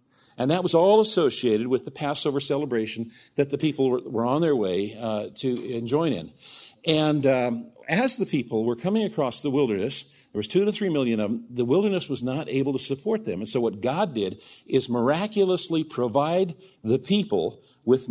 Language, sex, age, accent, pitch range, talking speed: English, male, 50-69, American, 115-155 Hz, 190 wpm